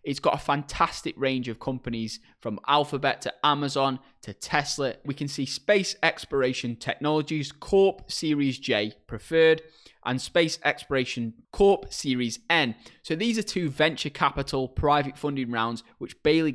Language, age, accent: English, 20-39, British